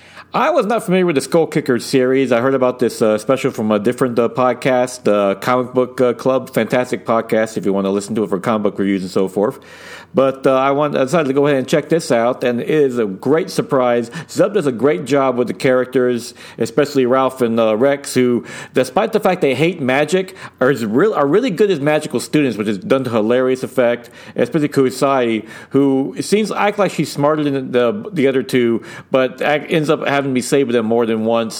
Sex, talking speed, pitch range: male, 230 wpm, 125-175 Hz